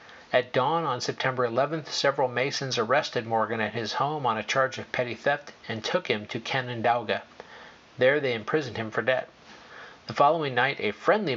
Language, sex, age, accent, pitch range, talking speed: English, male, 50-69, American, 115-150 Hz, 180 wpm